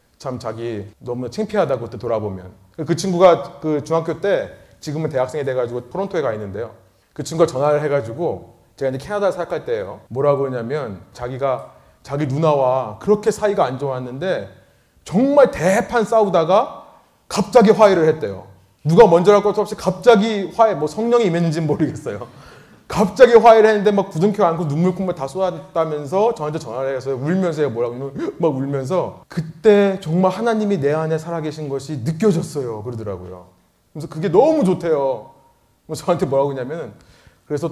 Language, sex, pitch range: Korean, male, 125-195 Hz